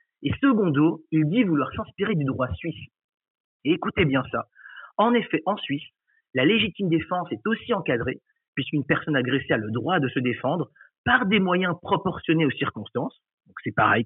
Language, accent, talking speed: French, French, 175 wpm